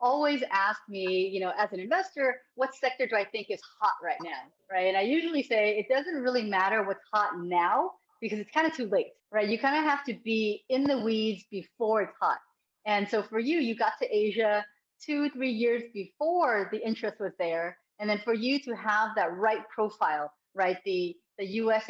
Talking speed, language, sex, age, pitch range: 210 wpm, Vietnamese, female, 30-49, 195-255 Hz